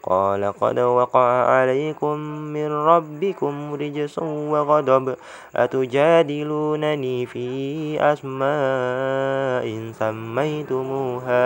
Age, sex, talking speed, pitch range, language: 20-39, male, 70 wpm, 110-135 Hz, Indonesian